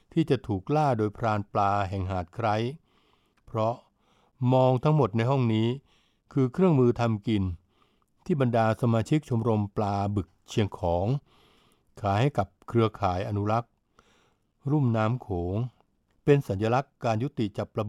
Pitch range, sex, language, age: 100-125 Hz, male, Thai, 60-79